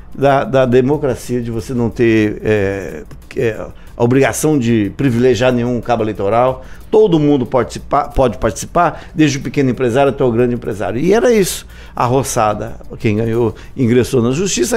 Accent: Brazilian